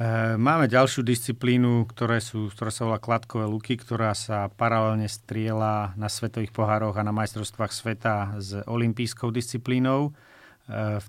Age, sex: 40-59, male